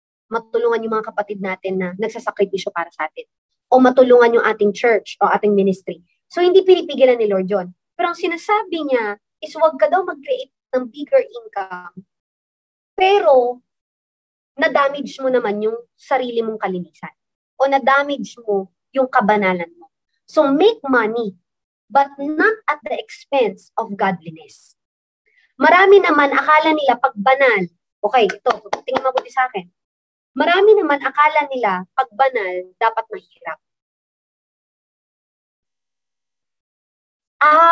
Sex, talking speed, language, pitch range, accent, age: male, 130 wpm, Filipino, 205-290 Hz, native, 20-39